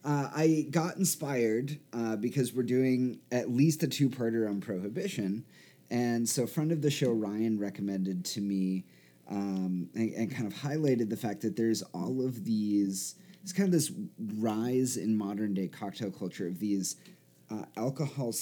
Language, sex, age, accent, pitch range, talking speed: English, male, 30-49, American, 100-130 Hz, 165 wpm